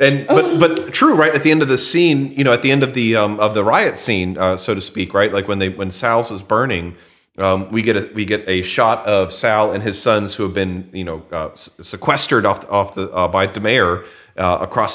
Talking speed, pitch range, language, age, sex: 255 wpm, 95-110 Hz, English, 30-49, male